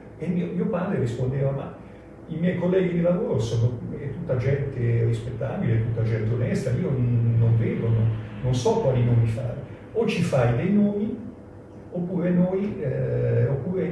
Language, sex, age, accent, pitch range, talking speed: Italian, male, 50-69, native, 110-140 Hz, 155 wpm